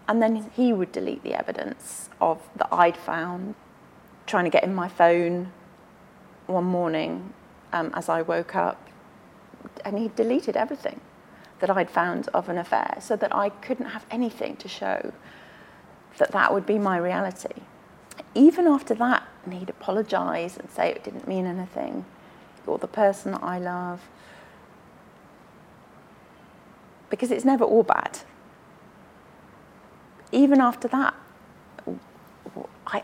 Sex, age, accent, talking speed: female, 30-49, British, 135 wpm